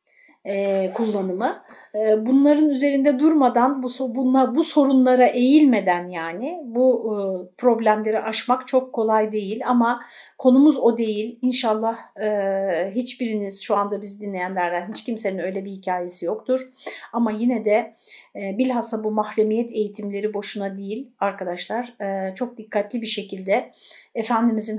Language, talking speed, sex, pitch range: Turkish, 110 wpm, female, 200-240 Hz